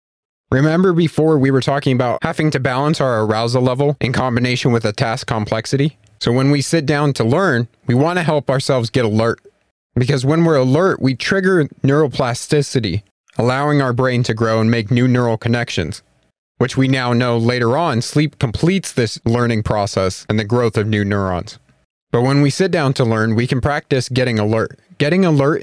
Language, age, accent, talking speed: English, 30-49, American, 185 wpm